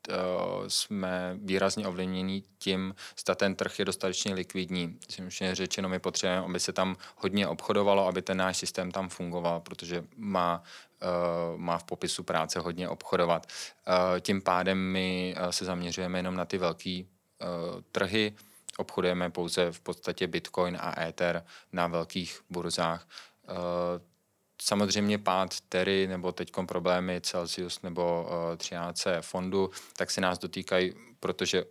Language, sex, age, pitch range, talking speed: Czech, male, 20-39, 90-95 Hz, 130 wpm